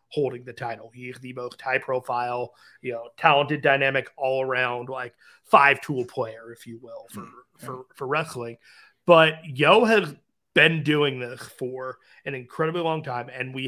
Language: English